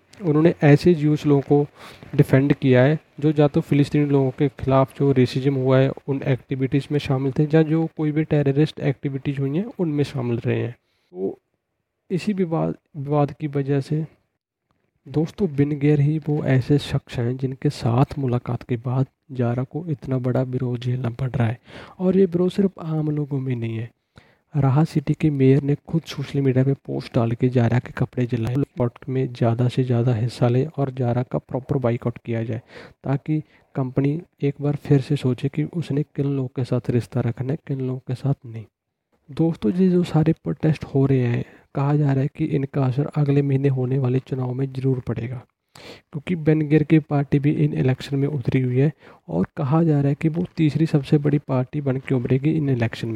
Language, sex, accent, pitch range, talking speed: Hindi, male, native, 130-150 Hz, 195 wpm